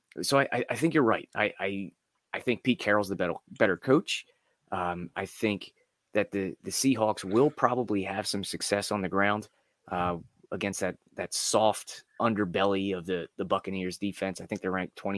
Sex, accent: male, American